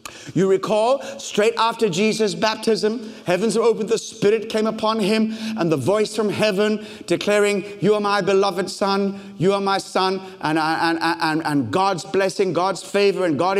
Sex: male